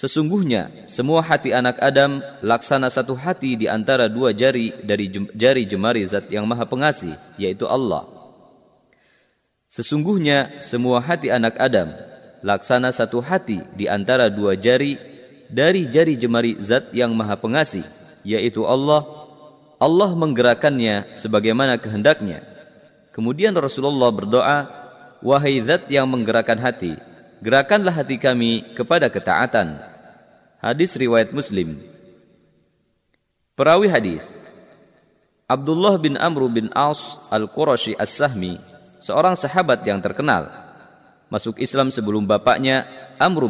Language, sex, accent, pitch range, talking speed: Indonesian, male, native, 115-140 Hz, 110 wpm